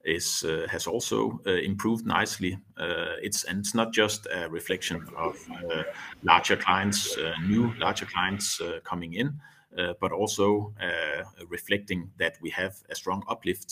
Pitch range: 90-115 Hz